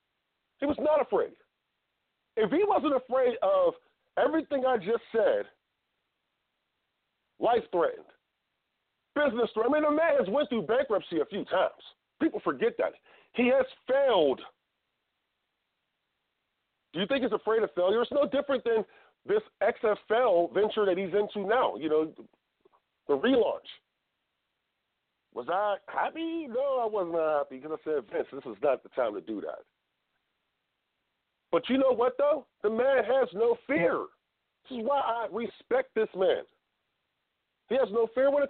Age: 40-59